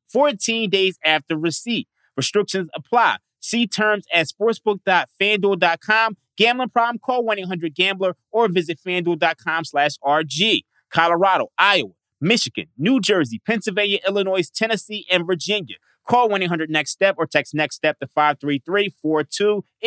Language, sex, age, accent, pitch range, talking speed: English, male, 30-49, American, 155-195 Hz, 105 wpm